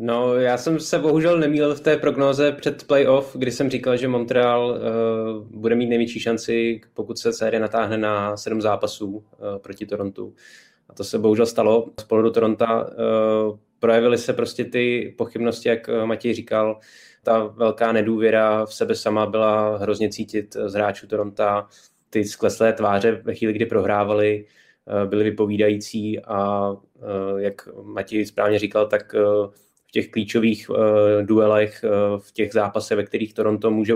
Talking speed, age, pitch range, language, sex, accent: 160 wpm, 20-39, 105-115 Hz, Czech, male, native